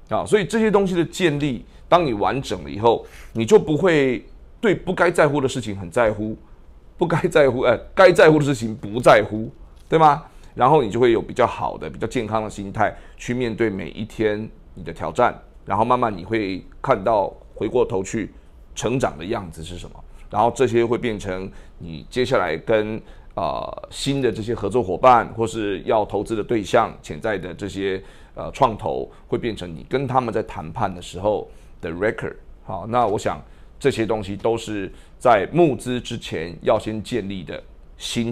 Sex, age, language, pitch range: male, 30-49, Chinese, 95-125 Hz